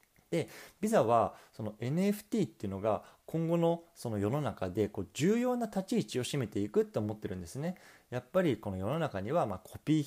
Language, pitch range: Japanese, 105-170 Hz